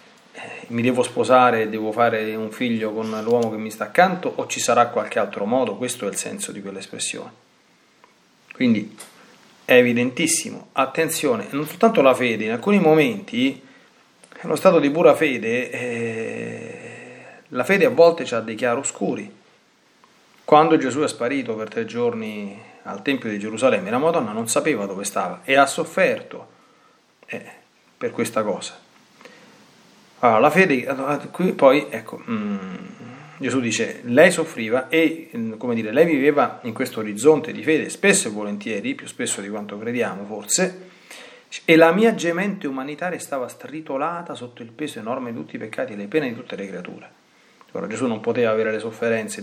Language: Italian